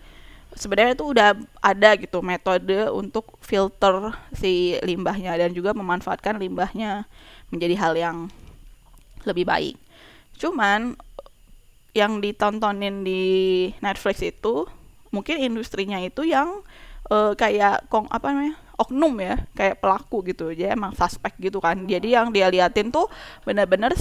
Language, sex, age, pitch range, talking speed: Indonesian, female, 20-39, 195-225 Hz, 125 wpm